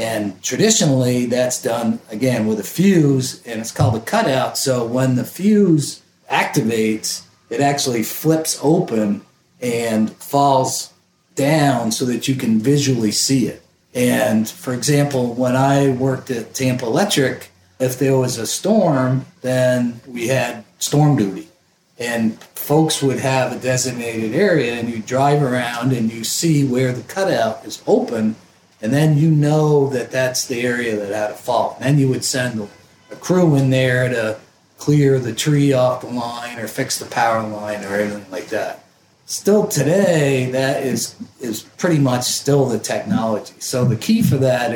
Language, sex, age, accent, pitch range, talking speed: English, male, 50-69, American, 115-145 Hz, 165 wpm